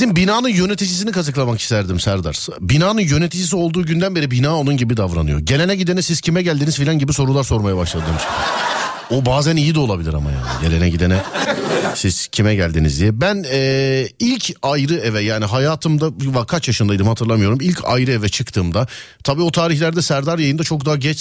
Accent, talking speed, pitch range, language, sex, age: native, 170 wpm, 115-180 Hz, Turkish, male, 40-59